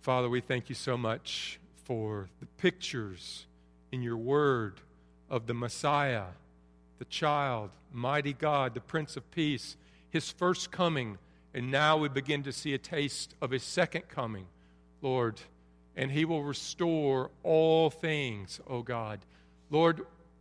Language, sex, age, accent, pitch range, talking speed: English, male, 50-69, American, 105-160 Hz, 140 wpm